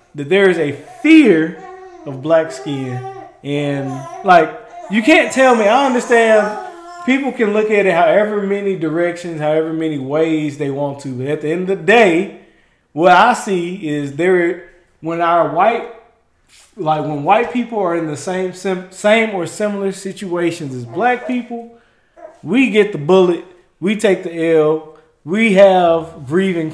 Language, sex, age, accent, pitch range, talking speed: English, male, 20-39, American, 150-205 Hz, 160 wpm